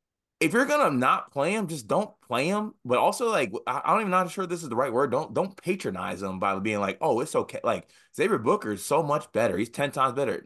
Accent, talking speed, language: American, 260 wpm, English